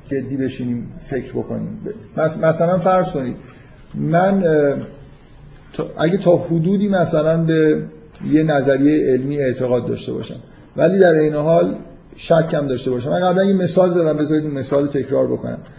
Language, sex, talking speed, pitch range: Persian, male, 135 wpm, 125-155 Hz